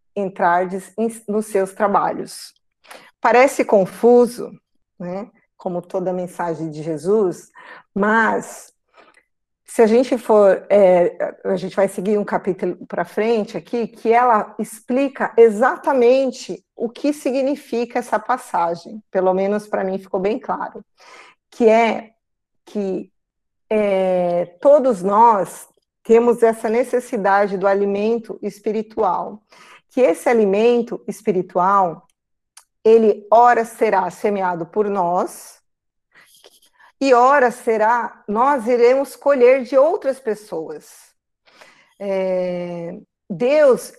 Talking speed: 100 wpm